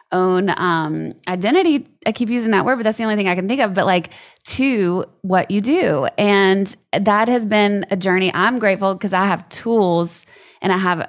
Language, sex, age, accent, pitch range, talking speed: English, female, 20-39, American, 180-220 Hz, 205 wpm